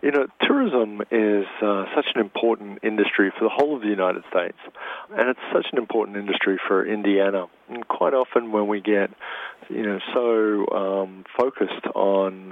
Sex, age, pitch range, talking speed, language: male, 50-69, 95-105 Hz, 175 wpm, English